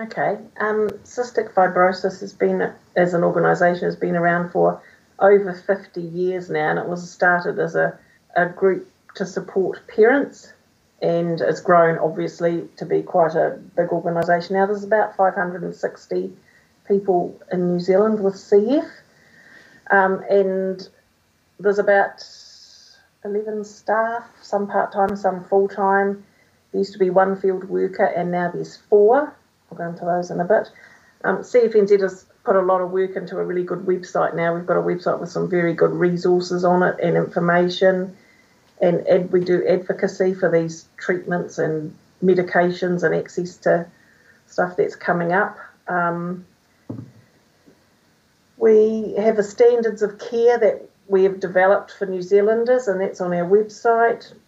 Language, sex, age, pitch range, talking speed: English, female, 40-59, 175-205 Hz, 155 wpm